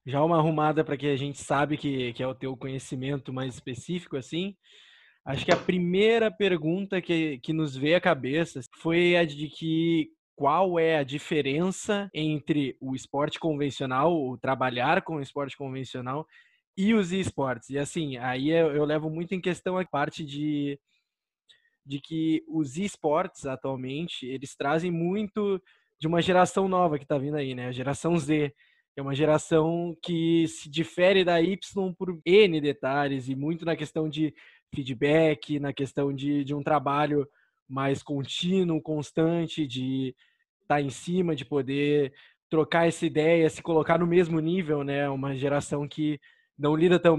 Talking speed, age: 165 wpm, 20-39